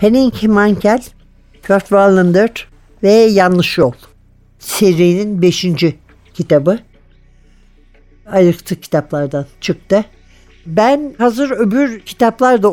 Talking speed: 85 wpm